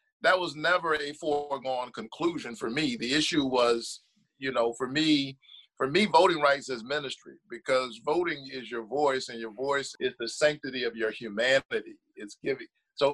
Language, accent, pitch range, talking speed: English, American, 130-200 Hz, 175 wpm